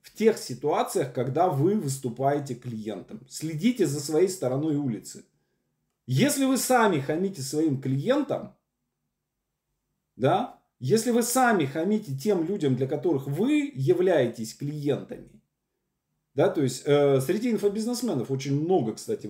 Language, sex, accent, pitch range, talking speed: Russian, male, native, 130-185 Hz, 115 wpm